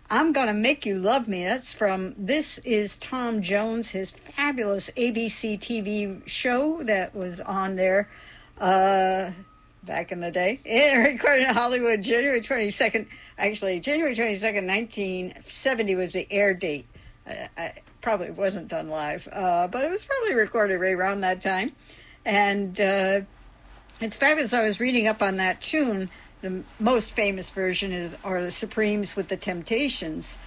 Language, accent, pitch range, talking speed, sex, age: English, American, 185-230 Hz, 150 wpm, female, 60-79